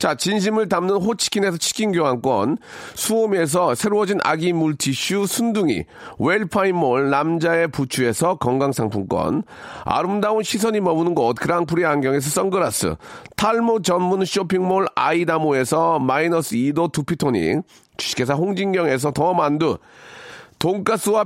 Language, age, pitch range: Korean, 40-59, 165-210 Hz